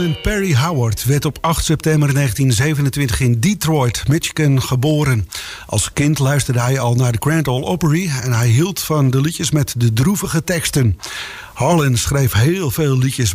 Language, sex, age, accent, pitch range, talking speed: English, male, 50-69, Dutch, 125-155 Hz, 165 wpm